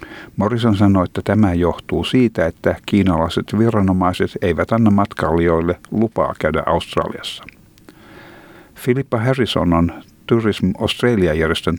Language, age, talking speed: Finnish, 50-69, 100 wpm